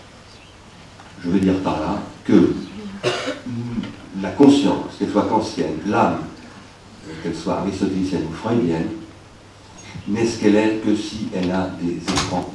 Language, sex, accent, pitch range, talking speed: French, male, French, 90-110 Hz, 130 wpm